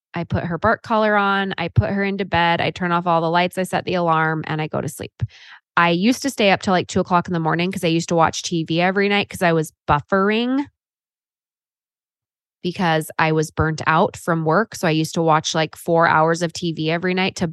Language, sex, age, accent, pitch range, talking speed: English, female, 20-39, American, 165-195 Hz, 240 wpm